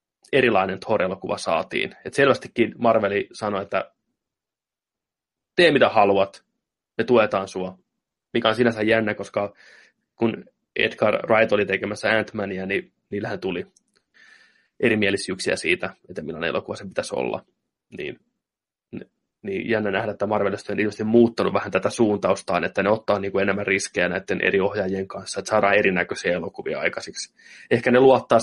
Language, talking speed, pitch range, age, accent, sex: Finnish, 135 wpm, 100-115 Hz, 20-39, native, male